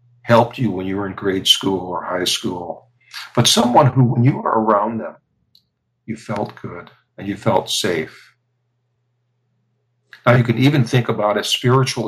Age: 60-79